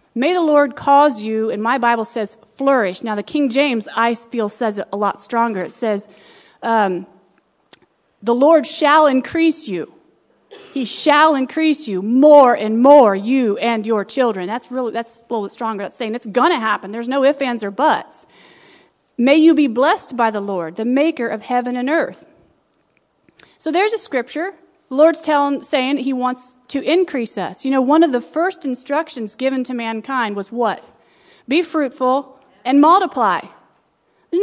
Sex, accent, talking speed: female, American, 175 wpm